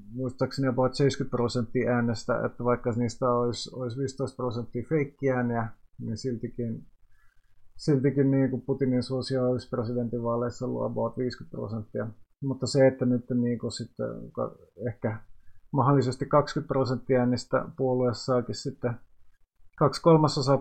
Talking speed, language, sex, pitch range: 120 wpm, Finnish, male, 120-140 Hz